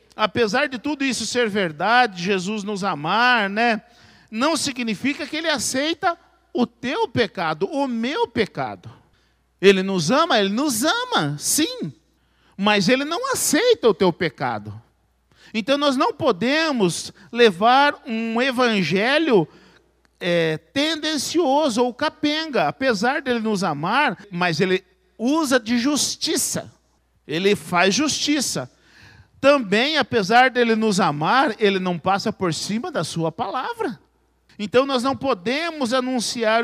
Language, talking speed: Portuguese, 125 wpm